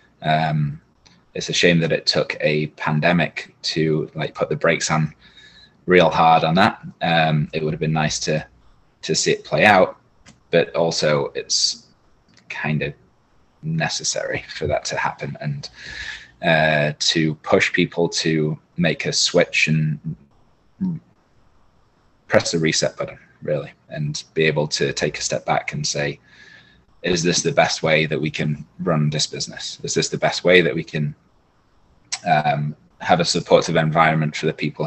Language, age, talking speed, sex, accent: English, 20-39, 160 wpm, male, British